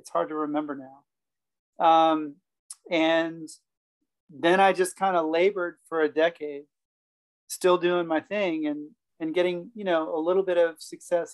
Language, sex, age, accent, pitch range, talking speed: English, male, 40-59, American, 150-175 Hz, 160 wpm